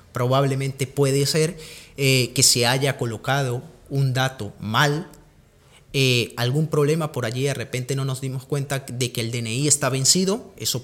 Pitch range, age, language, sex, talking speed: 130-165 Hz, 30-49, Spanish, male, 160 wpm